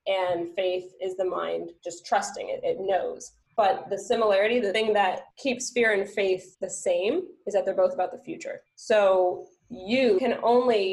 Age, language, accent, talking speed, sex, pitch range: 20-39, English, American, 180 wpm, female, 180-210 Hz